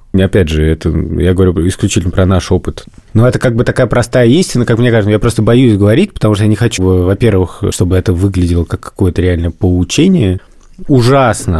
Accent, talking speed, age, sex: native, 190 wpm, 20-39, male